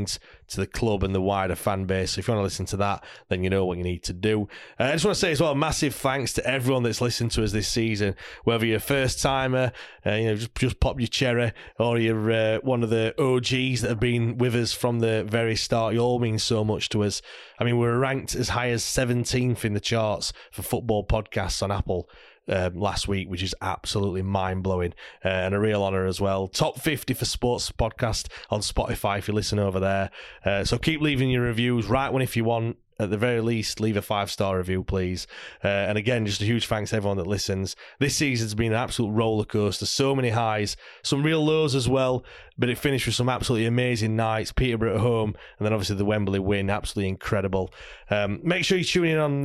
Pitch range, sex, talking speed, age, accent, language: 100-120 Hz, male, 230 wpm, 30-49, British, English